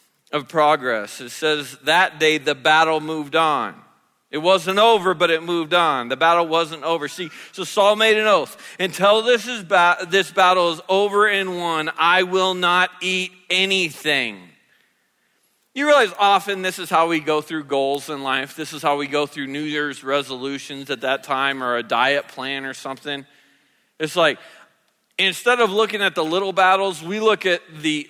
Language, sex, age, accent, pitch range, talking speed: English, male, 40-59, American, 155-215 Hz, 180 wpm